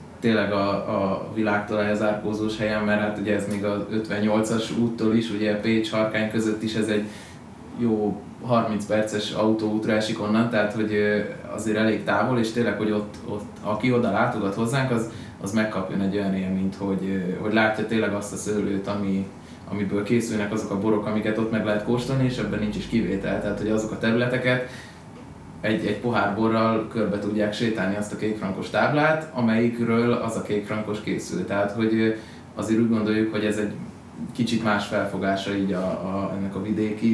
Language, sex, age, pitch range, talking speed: Hungarian, male, 20-39, 105-110 Hz, 180 wpm